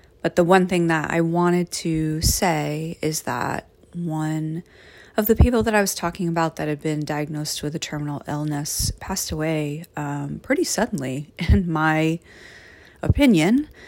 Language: English